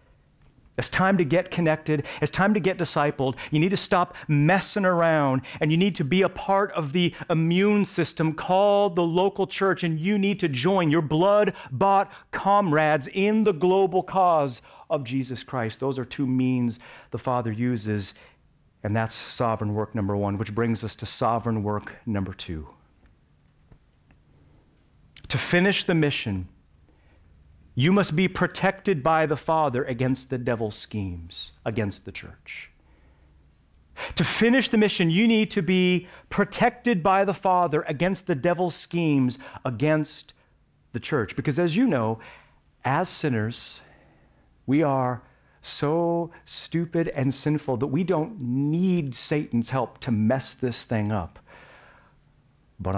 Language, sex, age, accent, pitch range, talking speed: English, male, 40-59, American, 115-180 Hz, 145 wpm